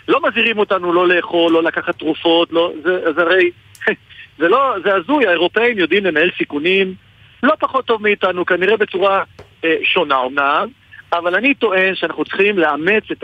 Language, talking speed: Hebrew, 165 wpm